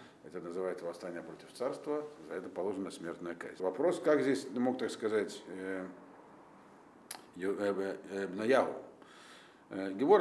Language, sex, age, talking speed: Russian, male, 50-69, 125 wpm